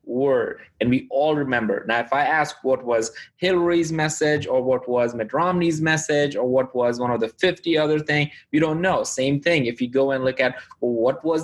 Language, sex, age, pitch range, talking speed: English, male, 20-39, 125-155 Hz, 215 wpm